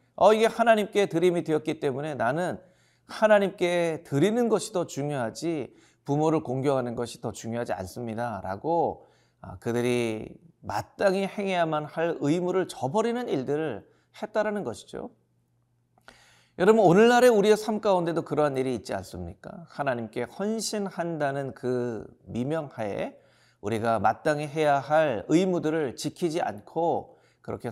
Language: Korean